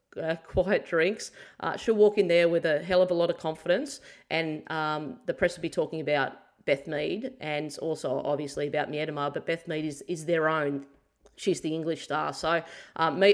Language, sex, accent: English, female, Australian